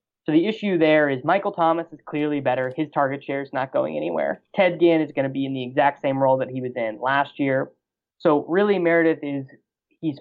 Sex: male